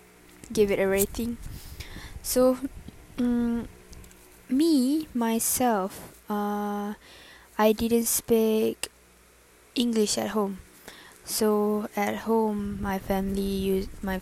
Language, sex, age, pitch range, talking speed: English, female, 10-29, 180-215 Hz, 95 wpm